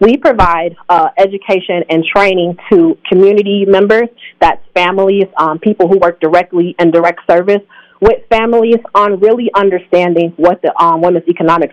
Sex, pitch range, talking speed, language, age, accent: female, 175-215 Hz, 150 wpm, English, 30-49, American